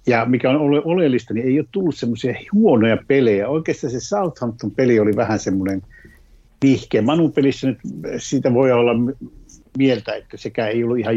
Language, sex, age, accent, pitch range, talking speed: Finnish, male, 60-79, native, 105-130 Hz, 155 wpm